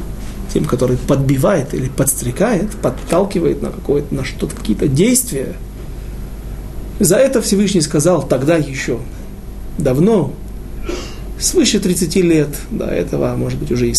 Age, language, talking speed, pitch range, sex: 40-59, Russian, 115 wpm, 150-195 Hz, male